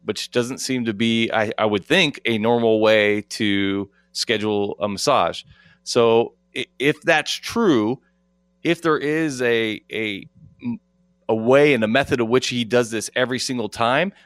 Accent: American